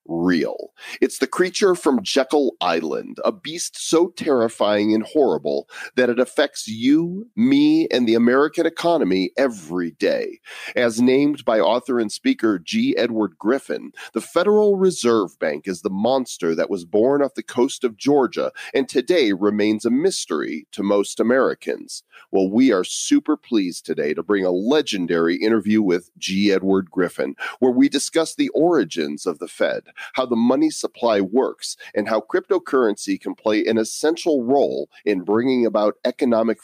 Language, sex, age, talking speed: English, male, 40-59, 155 wpm